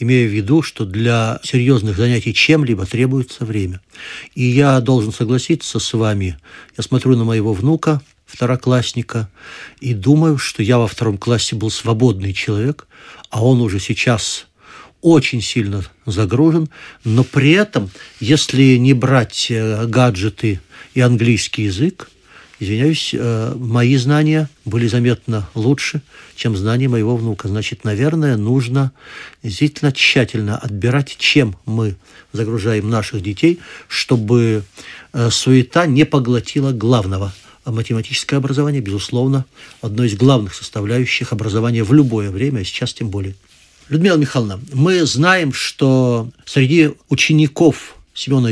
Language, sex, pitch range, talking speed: Russian, male, 110-140 Hz, 120 wpm